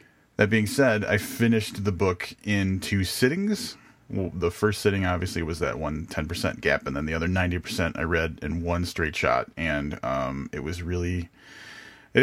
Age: 30-49